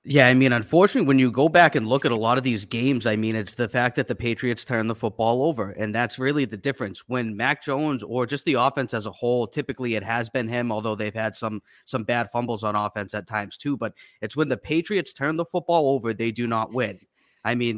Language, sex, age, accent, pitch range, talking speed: English, male, 20-39, American, 115-140 Hz, 255 wpm